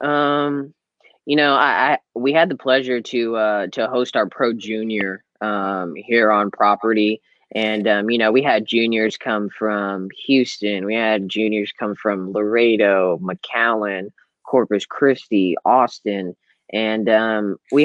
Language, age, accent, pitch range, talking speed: English, 10-29, American, 105-120 Hz, 145 wpm